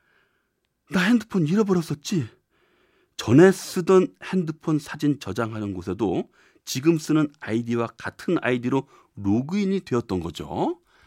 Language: Korean